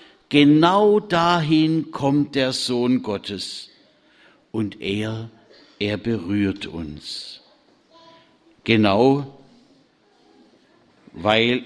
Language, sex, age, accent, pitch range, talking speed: German, male, 60-79, German, 105-165 Hz, 65 wpm